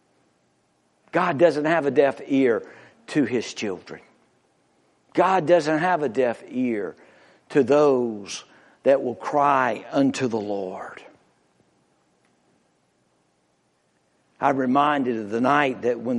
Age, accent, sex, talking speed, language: 60-79, American, male, 110 wpm, English